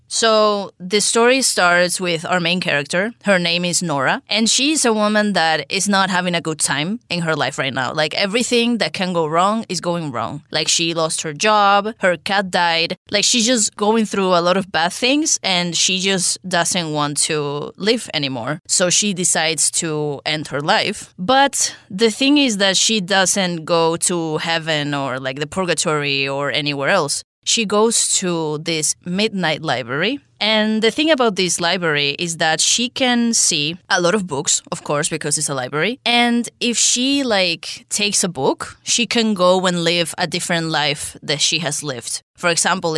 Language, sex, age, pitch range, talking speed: English, female, 20-39, 155-205 Hz, 190 wpm